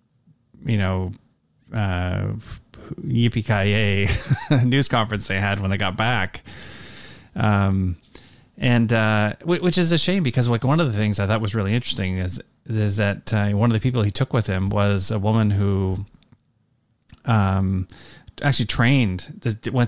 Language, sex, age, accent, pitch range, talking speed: English, male, 30-49, American, 100-120 Hz, 150 wpm